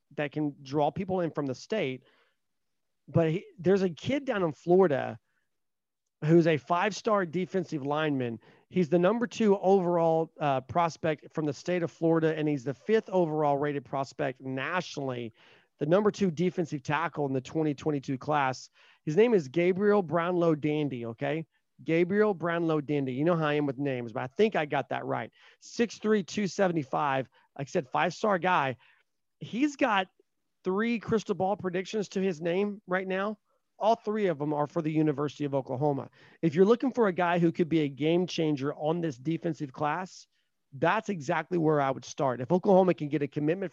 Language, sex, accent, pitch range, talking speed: English, male, American, 145-185 Hz, 180 wpm